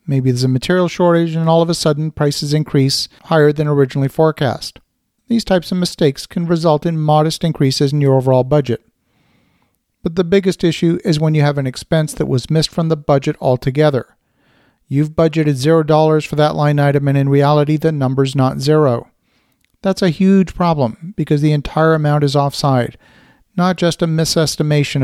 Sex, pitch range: male, 140-175 Hz